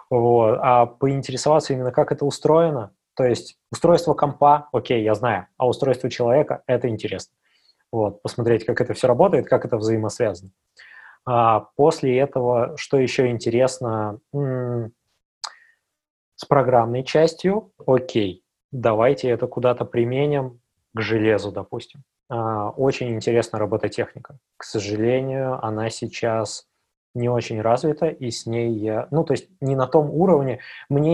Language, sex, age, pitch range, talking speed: Russian, male, 20-39, 110-135 Hz, 135 wpm